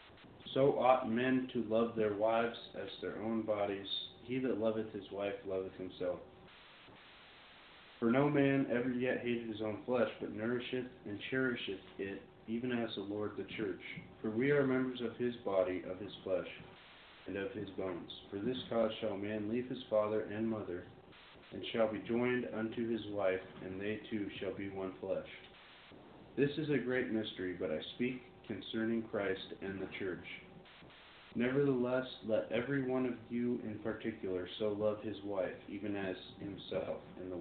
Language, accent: English, American